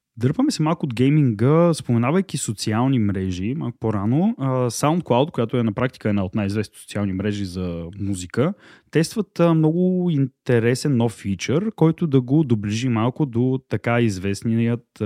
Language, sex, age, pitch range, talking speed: Bulgarian, male, 20-39, 100-145 Hz, 140 wpm